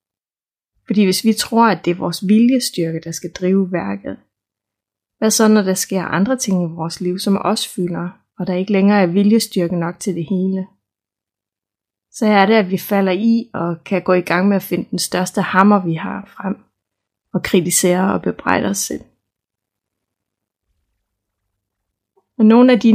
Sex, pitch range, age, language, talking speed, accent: female, 170-205 Hz, 20-39, Danish, 175 wpm, native